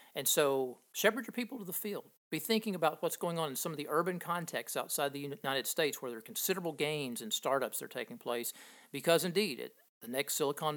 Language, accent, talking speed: English, American, 225 wpm